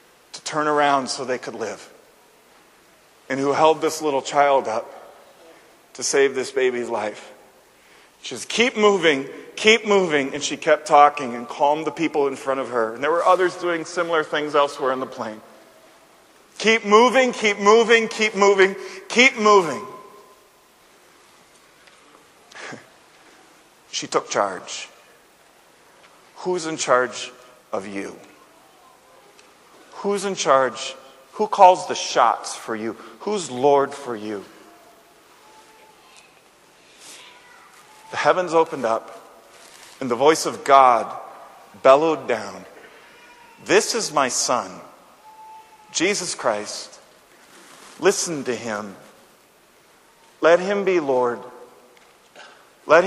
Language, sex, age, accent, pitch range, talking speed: English, male, 40-59, American, 135-205 Hz, 115 wpm